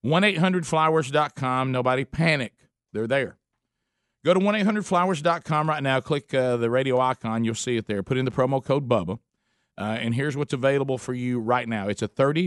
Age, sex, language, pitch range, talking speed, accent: 50-69, male, English, 120-155 Hz, 180 wpm, American